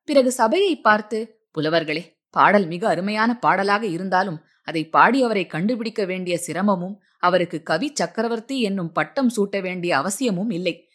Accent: native